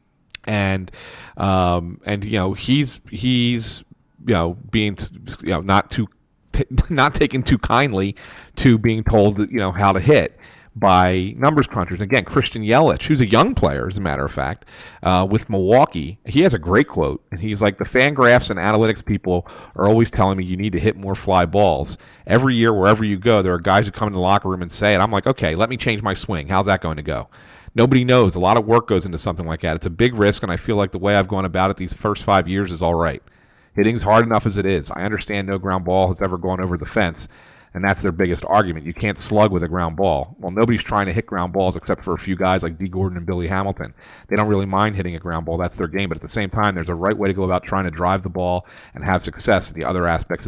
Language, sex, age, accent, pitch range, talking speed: English, male, 40-59, American, 90-120 Hz, 255 wpm